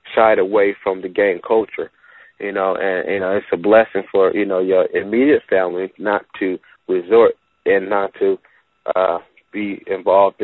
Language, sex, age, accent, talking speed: English, male, 30-49, American, 165 wpm